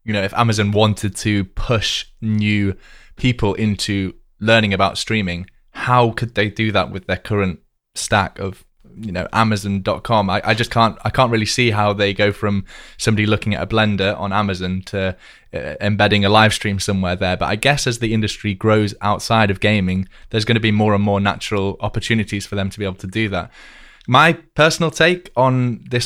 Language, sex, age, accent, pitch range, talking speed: English, male, 20-39, British, 100-115 Hz, 195 wpm